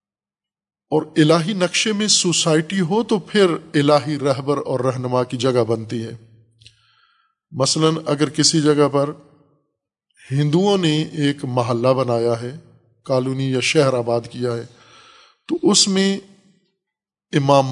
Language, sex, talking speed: Urdu, male, 125 wpm